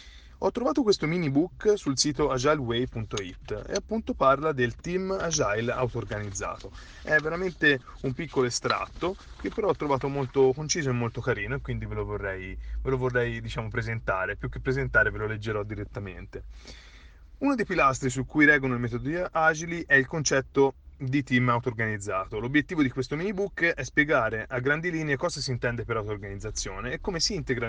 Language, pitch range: Italian, 110-150 Hz